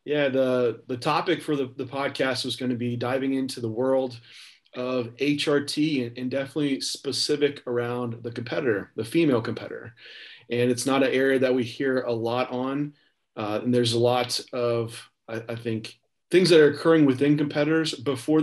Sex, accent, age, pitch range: male, American, 30-49, 125-145 Hz